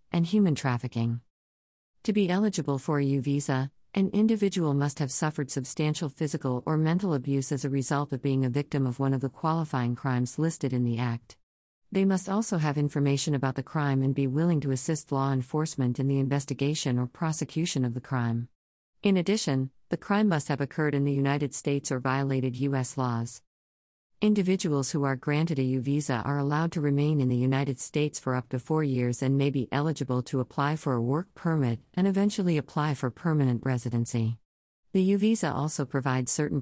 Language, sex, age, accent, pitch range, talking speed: English, female, 50-69, American, 130-155 Hz, 190 wpm